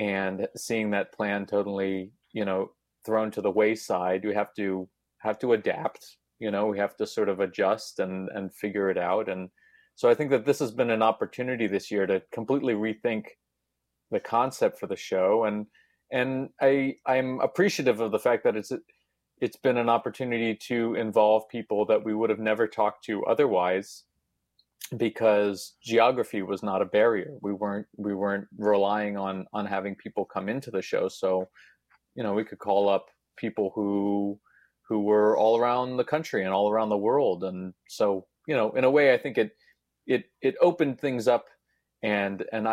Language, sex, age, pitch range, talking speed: English, male, 30-49, 100-115 Hz, 185 wpm